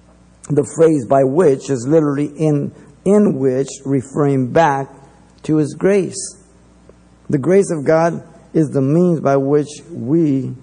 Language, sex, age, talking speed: English, male, 50-69, 135 wpm